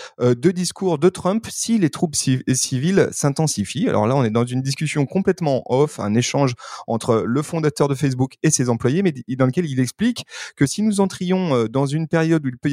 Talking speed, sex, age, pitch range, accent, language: 210 wpm, male, 30-49, 125-170 Hz, French, French